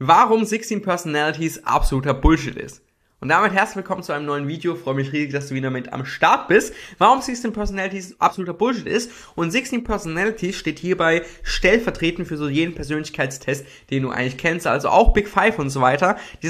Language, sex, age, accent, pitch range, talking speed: German, male, 20-39, German, 130-175 Hz, 190 wpm